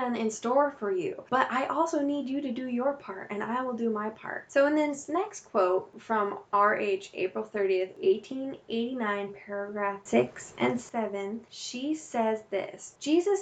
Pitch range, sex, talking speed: 215-280 Hz, female, 165 wpm